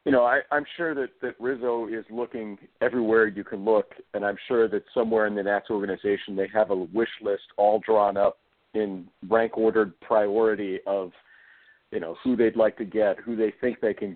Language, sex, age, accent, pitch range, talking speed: English, male, 50-69, American, 105-130 Hz, 200 wpm